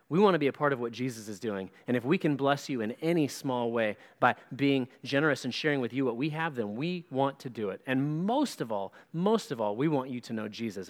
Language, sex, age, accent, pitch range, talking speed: English, male, 30-49, American, 125-155 Hz, 275 wpm